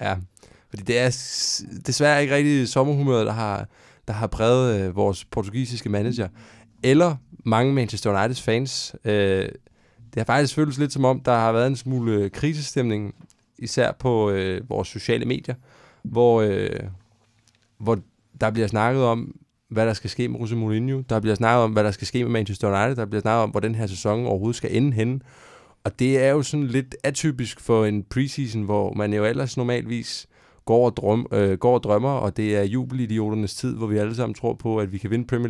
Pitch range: 110-130 Hz